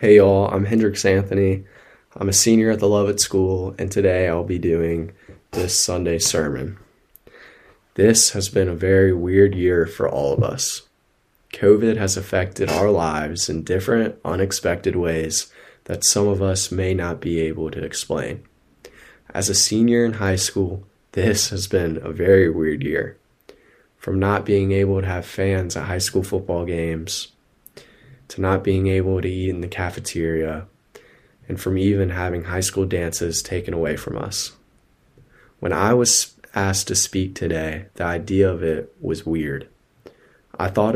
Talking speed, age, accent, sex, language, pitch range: 165 wpm, 20-39, American, male, English, 85-100 Hz